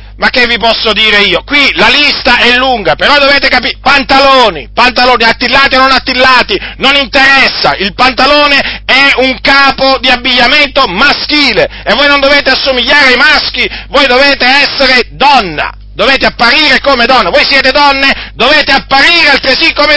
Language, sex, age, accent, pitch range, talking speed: Italian, male, 40-59, native, 230-275 Hz, 155 wpm